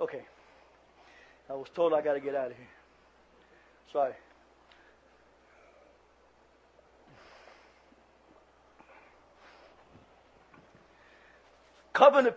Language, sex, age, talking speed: English, male, 30-49, 65 wpm